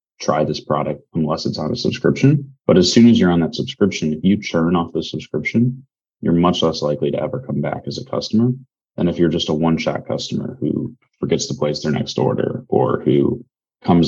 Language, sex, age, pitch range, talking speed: English, male, 20-39, 80-95 Hz, 215 wpm